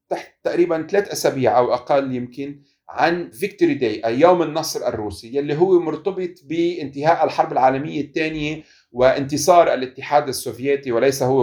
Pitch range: 125-165 Hz